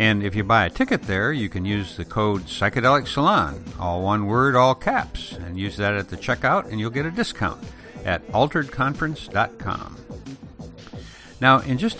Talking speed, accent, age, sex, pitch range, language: 175 wpm, American, 60-79, male, 95-130 Hz, English